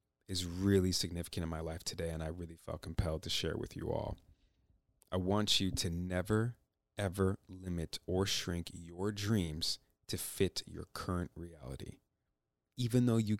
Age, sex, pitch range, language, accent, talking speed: 30-49, male, 85-100 Hz, English, American, 160 wpm